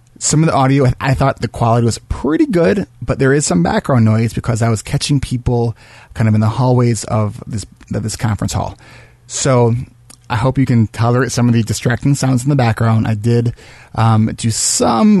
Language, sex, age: English, male, 30-49